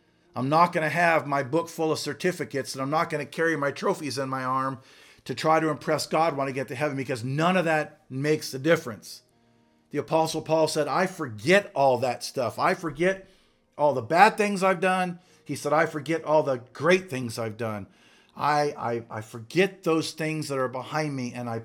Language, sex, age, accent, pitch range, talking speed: English, male, 50-69, American, 125-155 Hz, 210 wpm